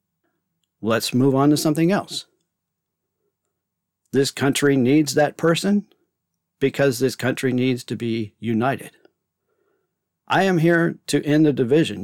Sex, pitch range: male, 120-150 Hz